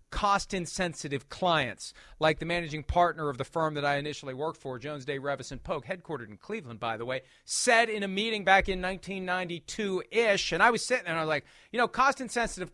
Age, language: 40-59, English